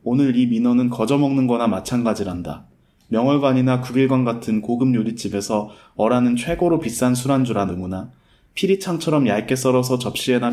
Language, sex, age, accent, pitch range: Korean, male, 20-39, native, 110-145 Hz